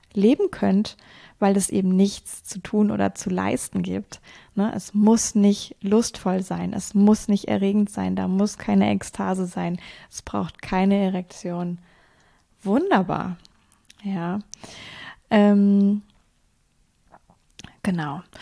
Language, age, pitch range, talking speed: German, 20-39, 185-220 Hz, 115 wpm